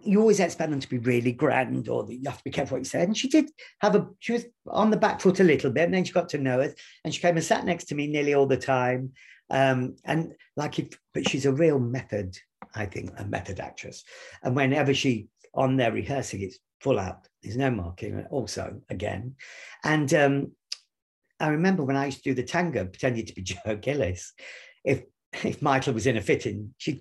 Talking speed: 230 wpm